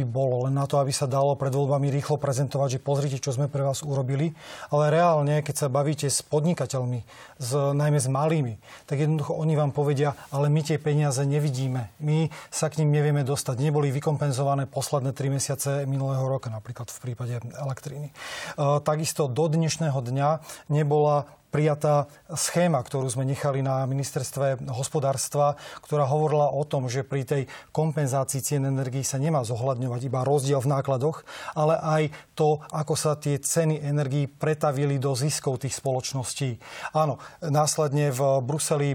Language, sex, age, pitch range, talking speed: Slovak, male, 30-49, 135-150 Hz, 155 wpm